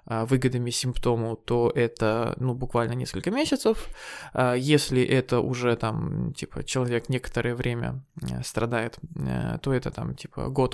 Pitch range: 125-155 Hz